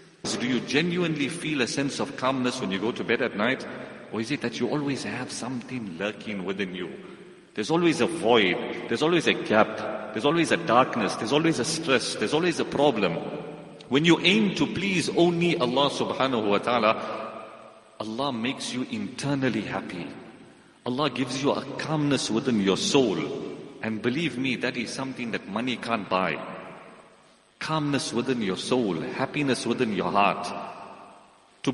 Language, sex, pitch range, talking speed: English, male, 110-155 Hz, 165 wpm